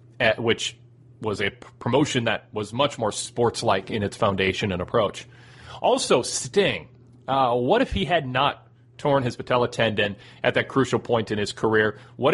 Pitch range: 115-140 Hz